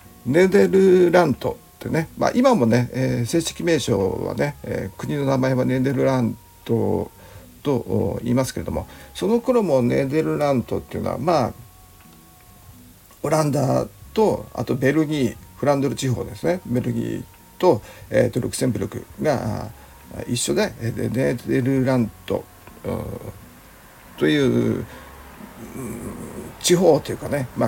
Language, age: Japanese, 60-79